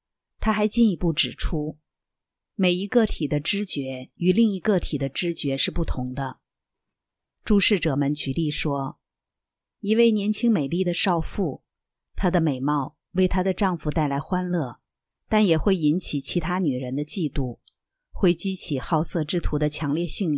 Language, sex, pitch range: Chinese, female, 145-195 Hz